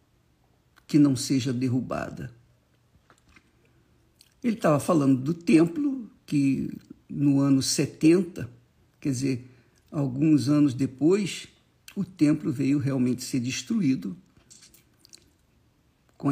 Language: Portuguese